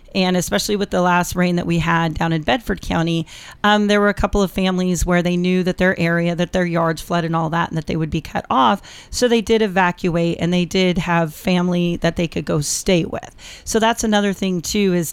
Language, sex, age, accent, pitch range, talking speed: English, female, 40-59, American, 180-230 Hz, 240 wpm